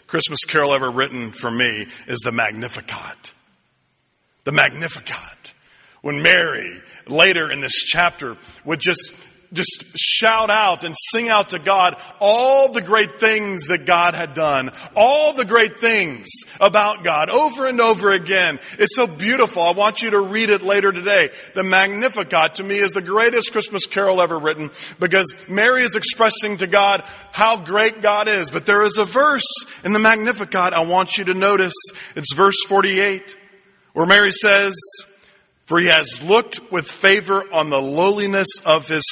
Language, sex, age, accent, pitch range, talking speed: English, male, 40-59, American, 165-210 Hz, 165 wpm